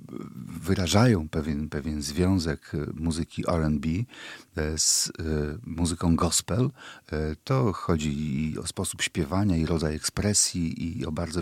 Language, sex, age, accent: Polish, male, 50-69, native